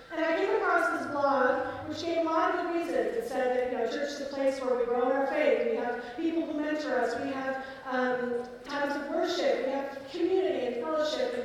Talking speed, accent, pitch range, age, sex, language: 235 wpm, American, 265-325 Hz, 40-59, female, English